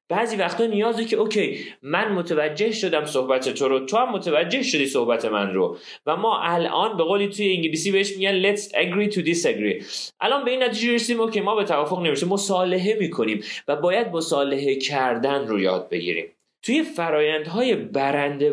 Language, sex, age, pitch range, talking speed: Persian, male, 30-49, 140-205 Hz, 175 wpm